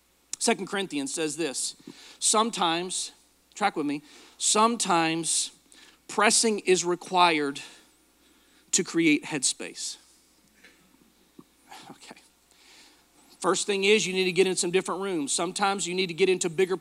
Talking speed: 120 wpm